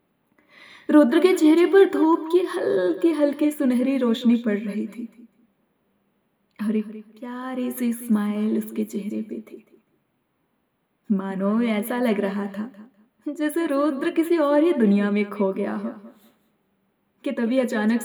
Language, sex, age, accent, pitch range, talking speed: Hindi, female, 20-39, native, 205-295 Hz, 125 wpm